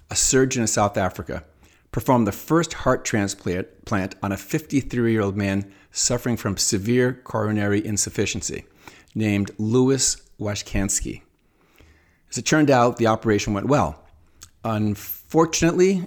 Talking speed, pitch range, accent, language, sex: 120 wpm, 95-120 Hz, American, English, male